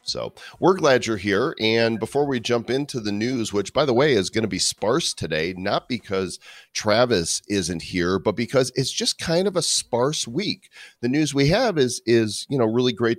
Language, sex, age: English, male, 40-59